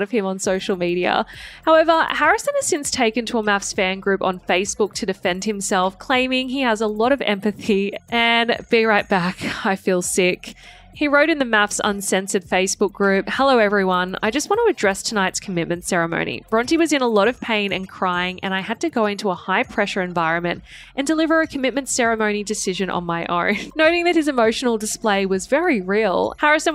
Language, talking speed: English, 200 wpm